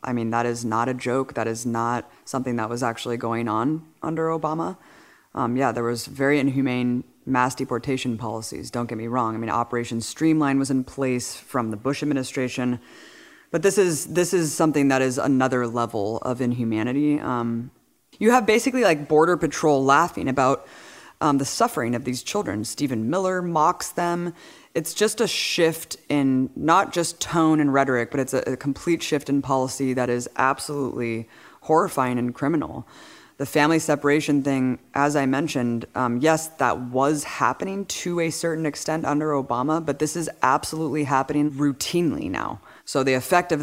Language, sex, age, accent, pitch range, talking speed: English, female, 20-39, American, 120-155 Hz, 175 wpm